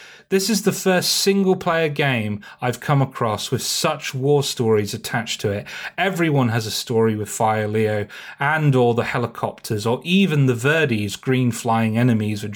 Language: English